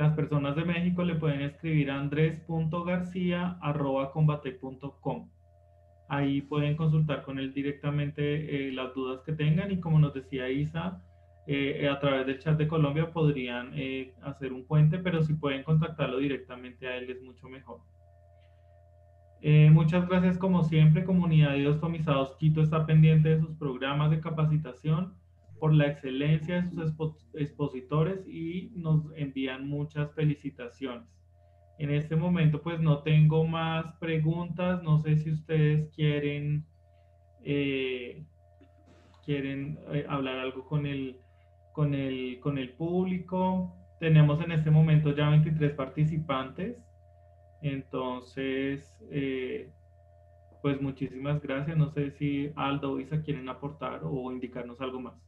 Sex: male